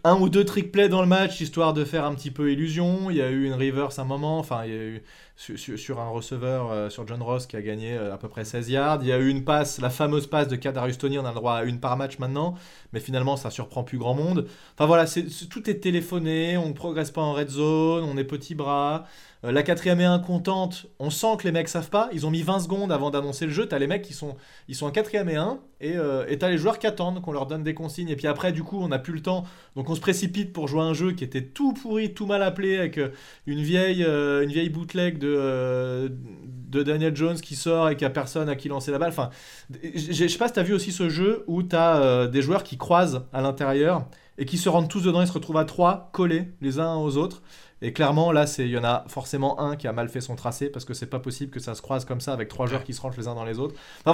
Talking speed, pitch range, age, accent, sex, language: 290 wpm, 135-175 Hz, 20-39, French, male, French